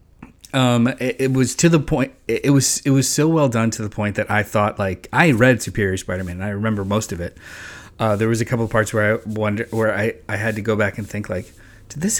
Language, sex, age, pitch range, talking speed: English, male, 20-39, 105-125 Hz, 265 wpm